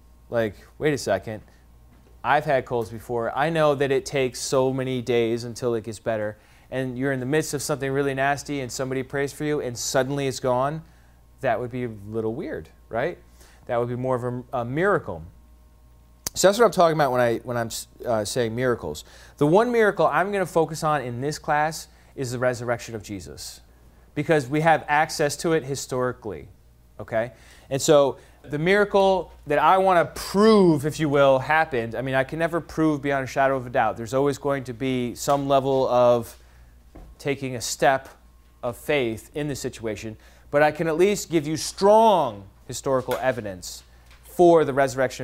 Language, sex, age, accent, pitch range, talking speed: English, male, 30-49, American, 110-150 Hz, 190 wpm